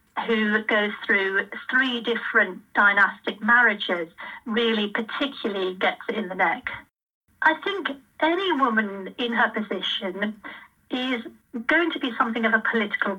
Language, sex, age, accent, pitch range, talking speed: English, female, 40-59, British, 205-270 Hz, 130 wpm